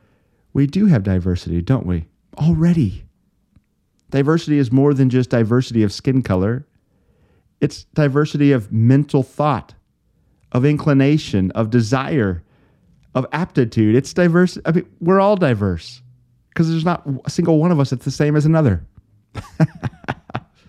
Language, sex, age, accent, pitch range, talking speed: English, male, 40-59, American, 105-140 Hz, 135 wpm